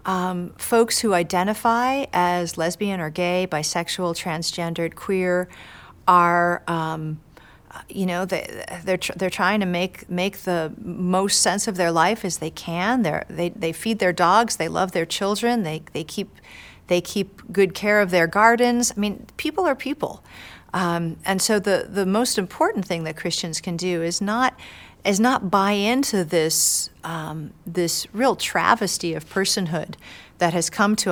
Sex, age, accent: female, 40-59, American